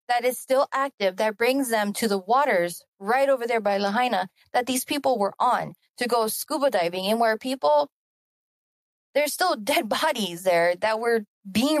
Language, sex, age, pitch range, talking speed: English, female, 20-39, 160-235 Hz, 180 wpm